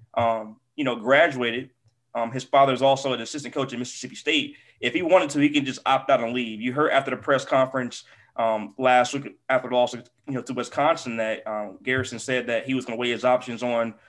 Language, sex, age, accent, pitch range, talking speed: English, male, 20-39, American, 120-140 Hz, 235 wpm